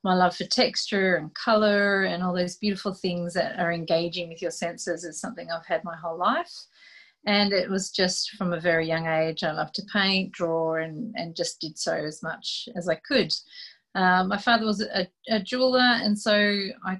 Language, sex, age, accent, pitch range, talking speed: English, female, 30-49, Australian, 170-210 Hz, 205 wpm